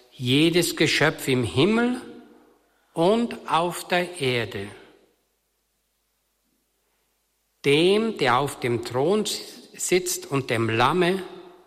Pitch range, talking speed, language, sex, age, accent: 125-170 Hz, 85 wpm, German, male, 60-79, German